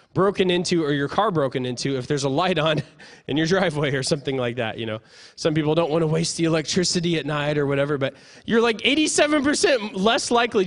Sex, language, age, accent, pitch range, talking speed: male, English, 20-39, American, 165-240 Hz, 220 wpm